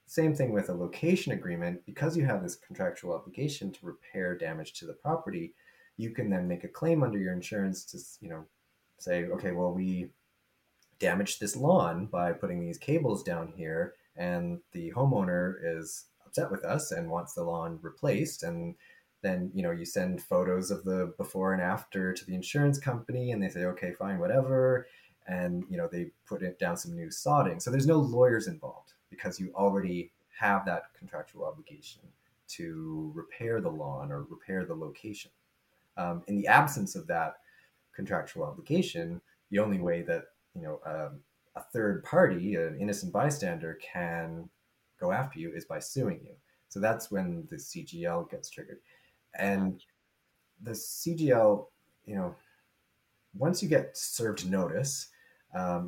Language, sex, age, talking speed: English, male, 30-49, 165 wpm